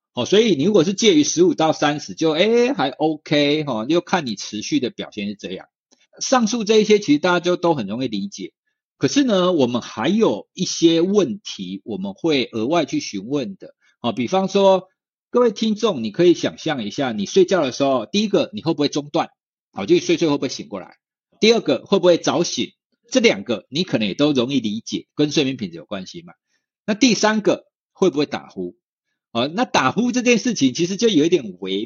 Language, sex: Chinese, male